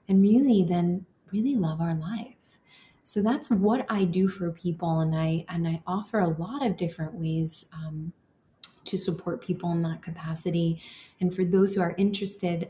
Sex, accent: female, American